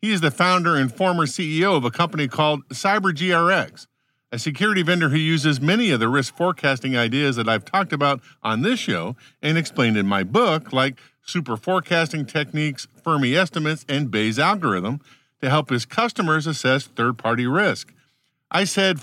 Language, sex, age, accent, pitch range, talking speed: English, male, 50-69, American, 125-170 Hz, 170 wpm